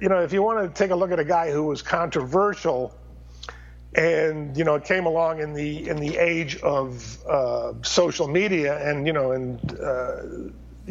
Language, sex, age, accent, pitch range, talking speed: English, male, 50-69, American, 140-175 Hz, 185 wpm